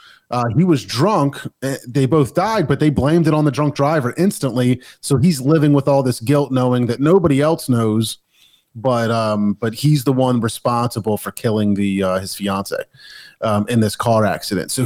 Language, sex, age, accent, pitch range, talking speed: English, male, 30-49, American, 120-160 Hz, 185 wpm